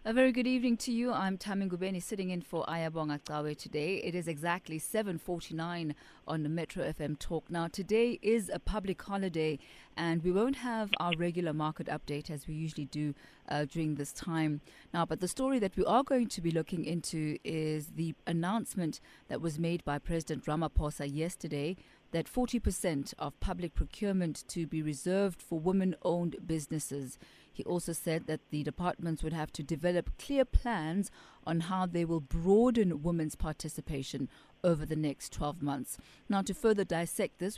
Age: 30-49